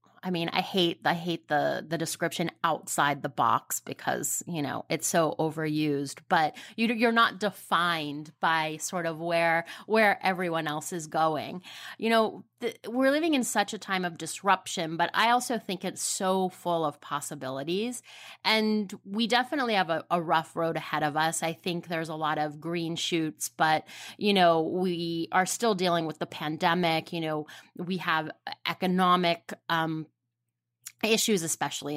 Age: 30-49